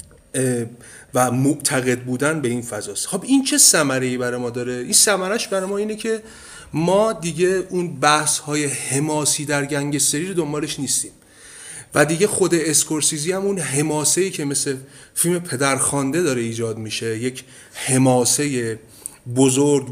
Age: 30-49